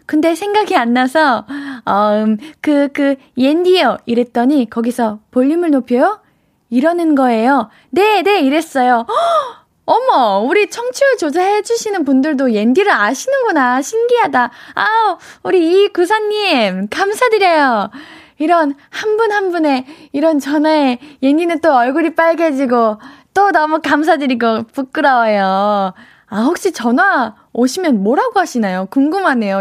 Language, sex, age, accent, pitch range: Korean, female, 20-39, native, 235-335 Hz